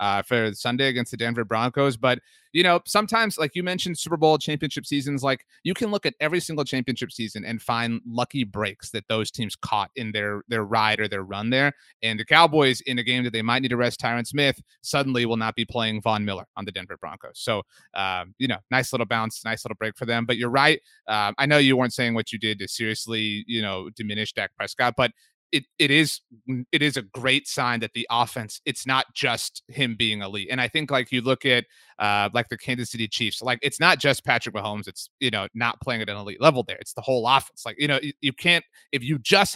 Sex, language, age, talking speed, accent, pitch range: male, English, 30-49, 240 wpm, American, 115-150 Hz